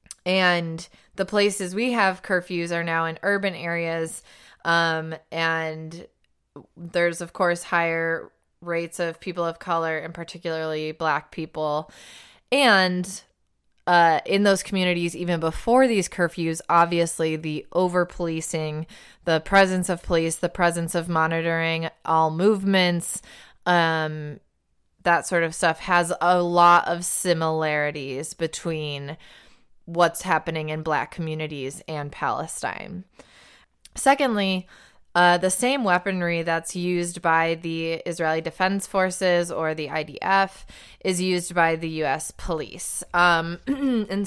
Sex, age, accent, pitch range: female, 20-39, American, 160-180 Hz